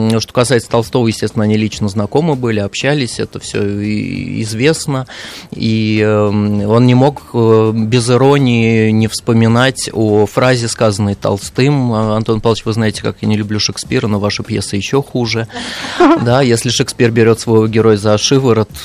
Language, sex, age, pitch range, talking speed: Russian, male, 30-49, 105-125 Hz, 145 wpm